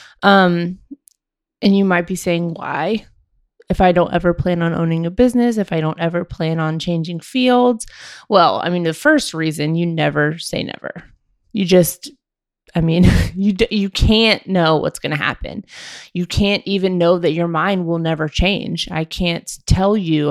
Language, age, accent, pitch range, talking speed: English, 20-39, American, 160-195 Hz, 175 wpm